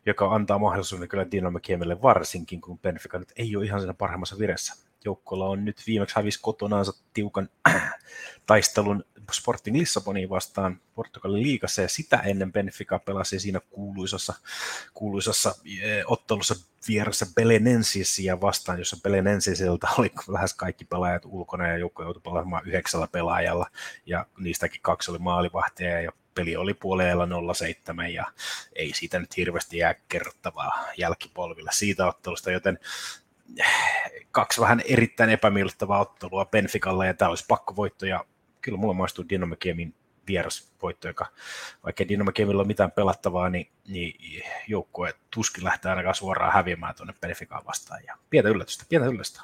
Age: 30-49